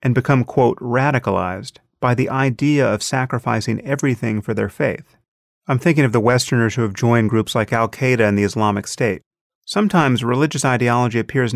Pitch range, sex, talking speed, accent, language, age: 110-145 Hz, male, 165 wpm, American, English, 30-49